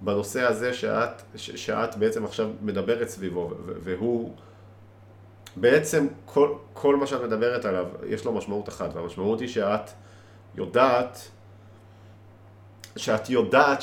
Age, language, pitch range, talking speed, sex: 40-59, Hebrew, 100-125 Hz, 120 wpm, male